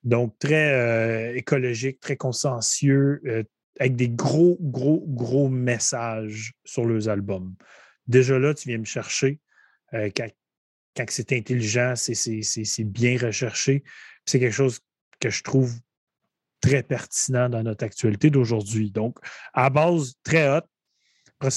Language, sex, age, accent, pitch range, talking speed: French, male, 30-49, Canadian, 120-140 Hz, 140 wpm